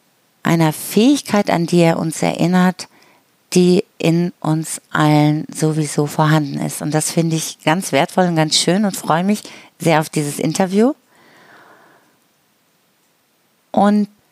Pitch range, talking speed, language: 155-180 Hz, 130 wpm, German